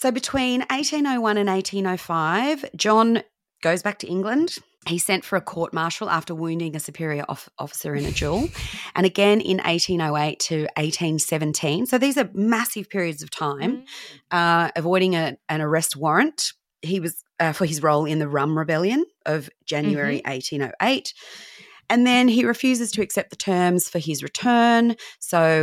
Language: English